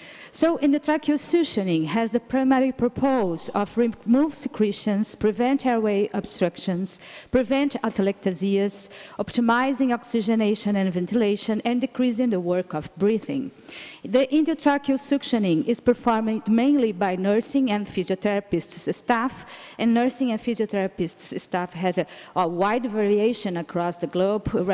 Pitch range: 185-255 Hz